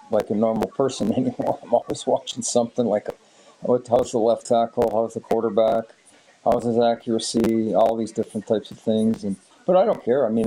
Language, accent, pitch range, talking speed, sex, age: English, American, 105-120 Hz, 190 wpm, male, 50-69